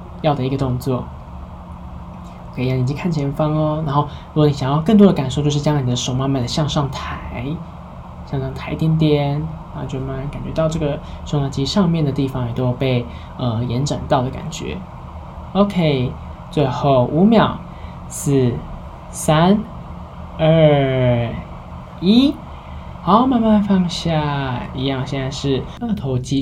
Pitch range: 120-150 Hz